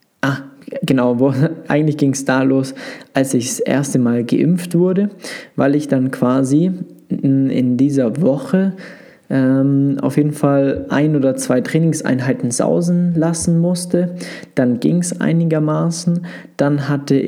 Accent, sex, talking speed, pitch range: German, male, 135 wpm, 130-170 Hz